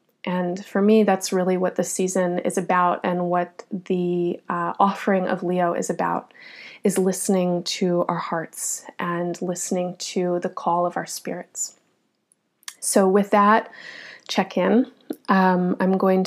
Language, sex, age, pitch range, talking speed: English, female, 20-39, 180-205 Hz, 150 wpm